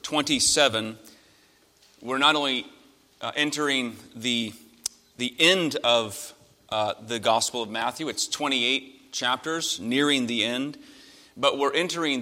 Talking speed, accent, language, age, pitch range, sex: 120 wpm, American, English, 30-49, 120-160 Hz, male